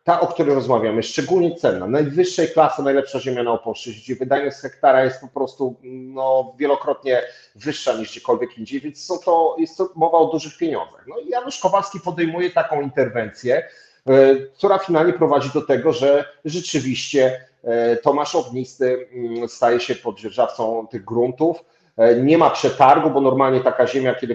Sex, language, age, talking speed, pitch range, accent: male, Polish, 40-59, 155 wpm, 125-155 Hz, native